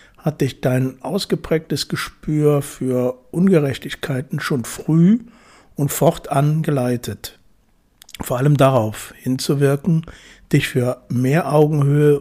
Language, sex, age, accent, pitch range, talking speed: German, male, 60-79, German, 125-155 Hz, 100 wpm